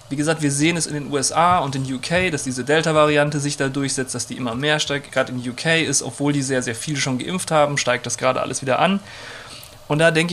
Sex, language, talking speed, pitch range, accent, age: male, German, 250 wpm, 130-165 Hz, German, 30-49